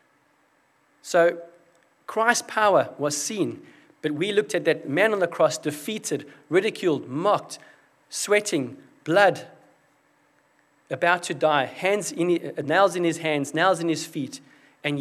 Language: English